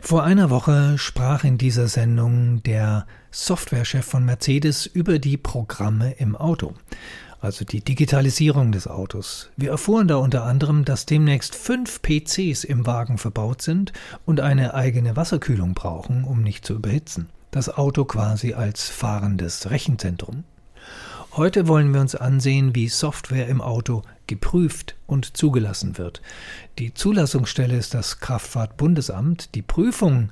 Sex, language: male, German